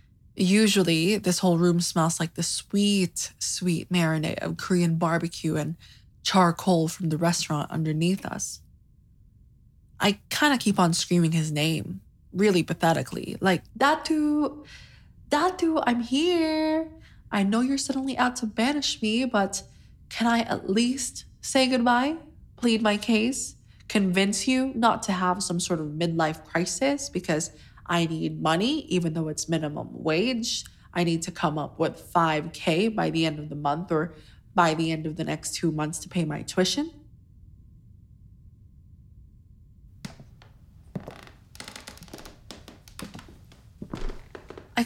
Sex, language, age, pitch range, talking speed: female, English, 20-39, 160-230 Hz, 130 wpm